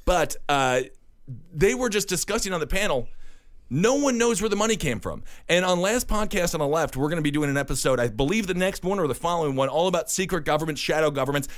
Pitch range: 135-185 Hz